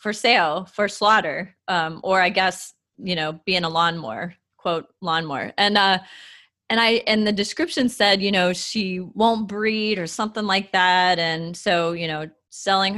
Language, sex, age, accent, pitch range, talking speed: English, female, 20-39, American, 180-220 Hz, 170 wpm